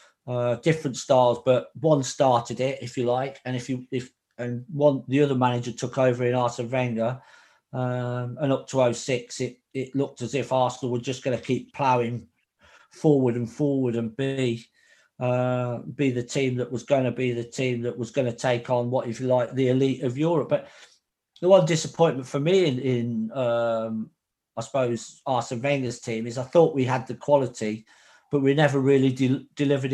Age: 40-59